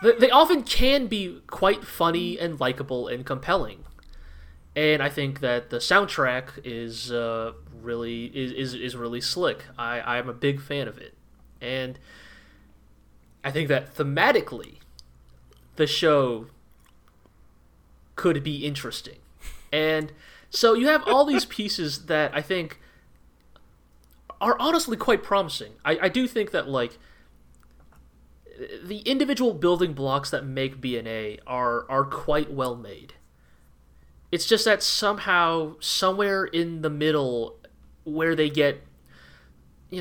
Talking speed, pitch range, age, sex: 125 wpm, 100-155 Hz, 30-49, male